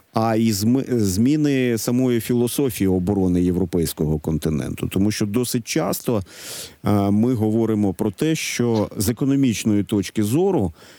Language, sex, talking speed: Ukrainian, male, 115 wpm